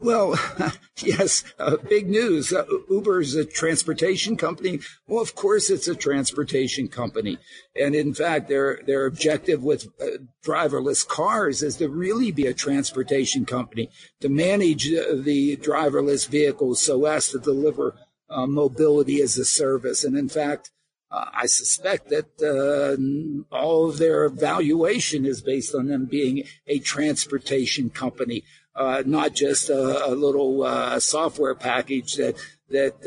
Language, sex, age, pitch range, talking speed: English, male, 50-69, 135-185 Hz, 145 wpm